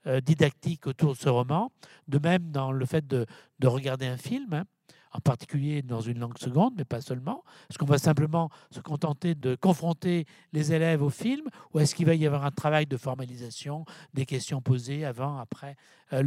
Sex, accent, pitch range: male, French, 135-170 Hz